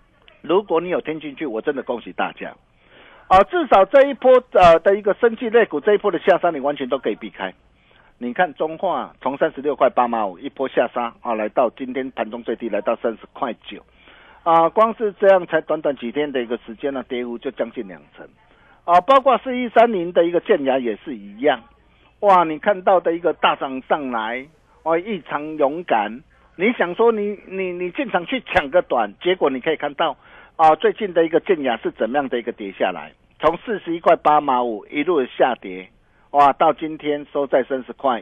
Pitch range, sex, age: 130-195 Hz, male, 50-69